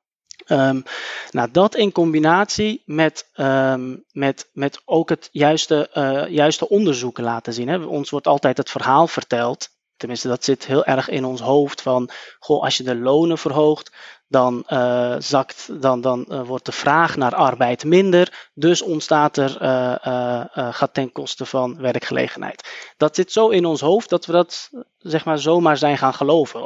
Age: 20-39